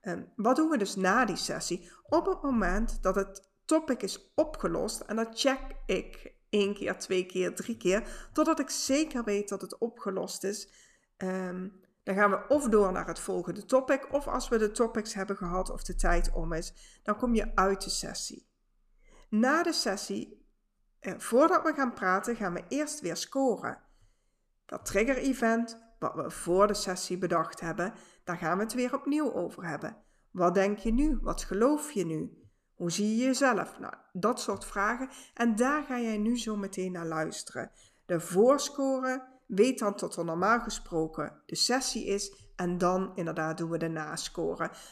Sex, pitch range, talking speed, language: female, 185-255 Hz, 175 wpm, Dutch